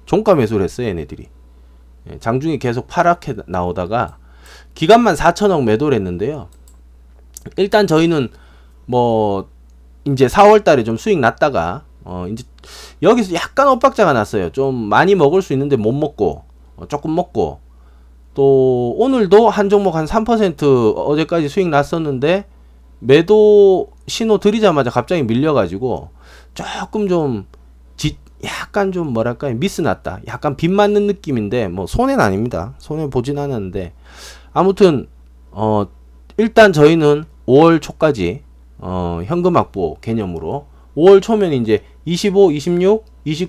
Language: English